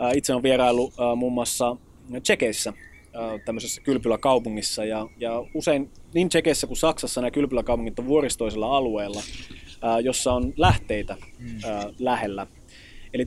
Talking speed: 110 wpm